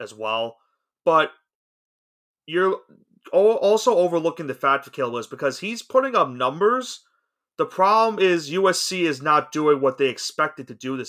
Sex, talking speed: male, 155 wpm